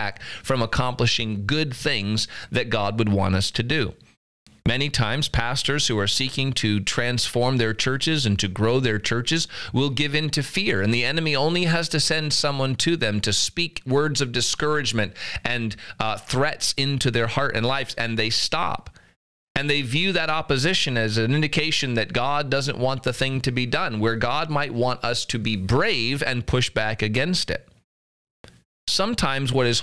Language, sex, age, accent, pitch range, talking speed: English, male, 40-59, American, 110-140 Hz, 180 wpm